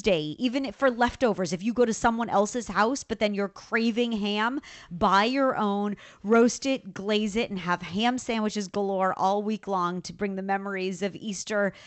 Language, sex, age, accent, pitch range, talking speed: English, female, 40-59, American, 190-230 Hz, 185 wpm